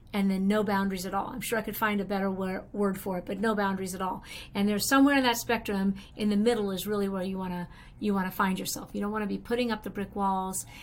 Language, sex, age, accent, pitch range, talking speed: English, female, 50-69, American, 190-235 Hz, 265 wpm